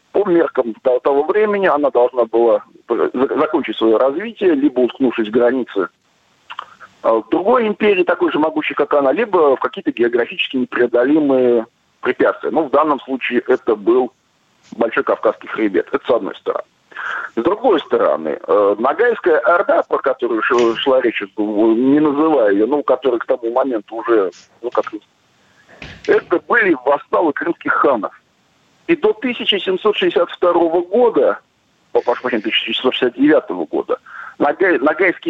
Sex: male